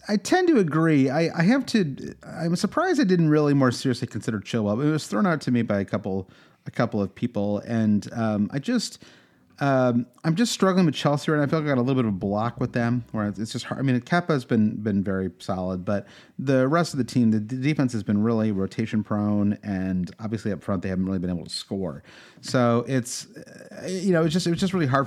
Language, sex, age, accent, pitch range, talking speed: English, male, 30-49, American, 105-150 Hz, 245 wpm